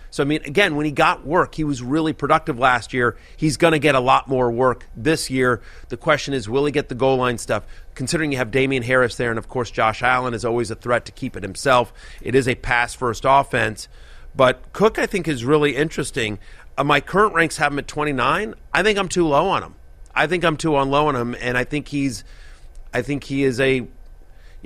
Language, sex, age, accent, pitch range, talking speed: English, male, 30-49, American, 115-145 Hz, 240 wpm